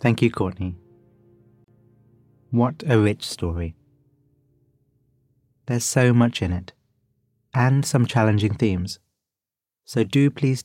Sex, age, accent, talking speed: male, 30-49, British, 105 wpm